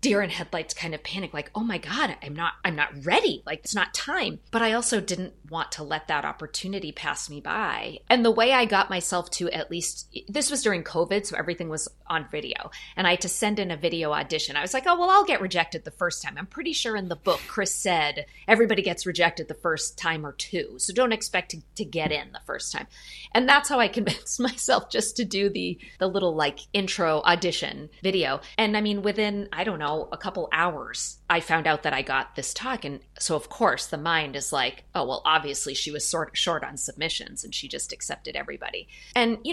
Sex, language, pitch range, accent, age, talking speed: female, English, 155-210 Hz, American, 30-49, 235 wpm